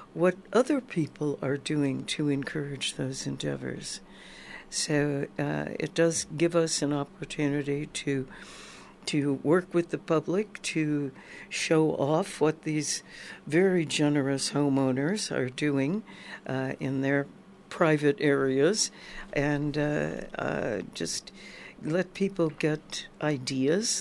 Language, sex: English, female